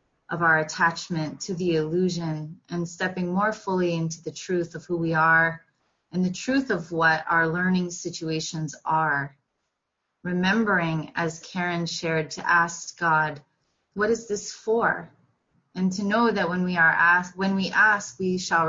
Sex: female